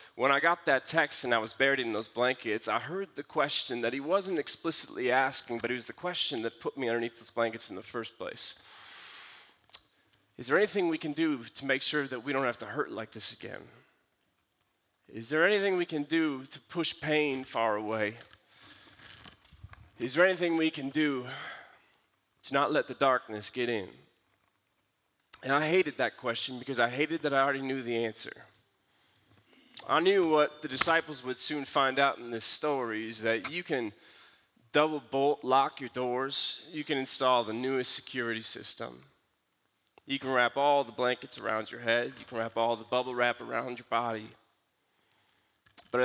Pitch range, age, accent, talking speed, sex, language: 115-150 Hz, 30-49, American, 180 wpm, male, English